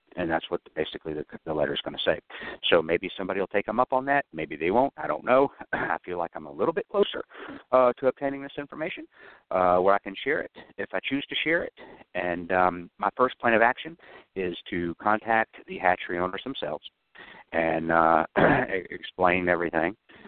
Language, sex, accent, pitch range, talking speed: English, male, American, 80-105 Hz, 200 wpm